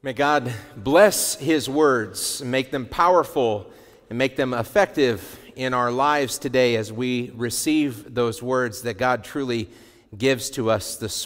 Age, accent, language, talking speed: 40-59, American, English, 155 wpm